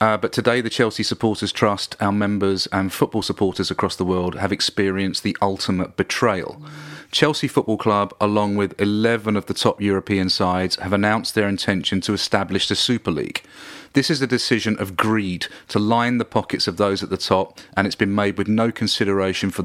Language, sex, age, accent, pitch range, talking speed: English, male, 40-59, British, 95-115 Hz, 190 wpm